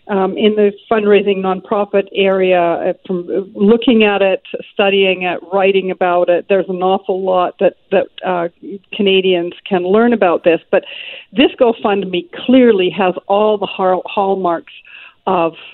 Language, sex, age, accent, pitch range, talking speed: English, female, 50-69, American, 185-220 Hz, 145 wpm